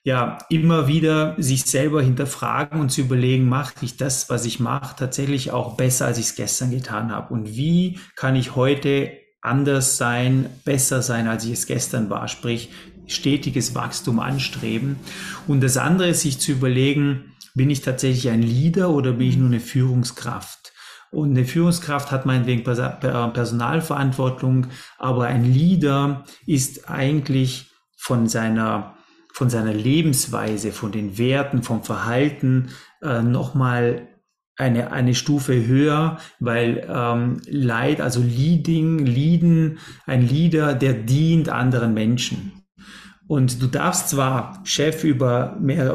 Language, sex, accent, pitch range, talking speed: German, male, German, 125-145 Hz, 140 wpm